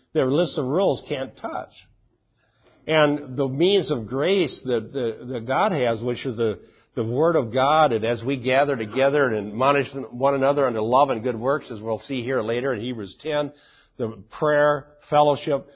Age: 50-69